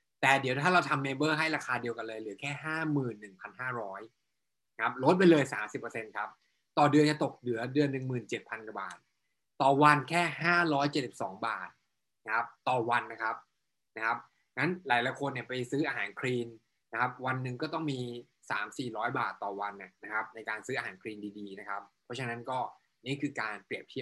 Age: 20-39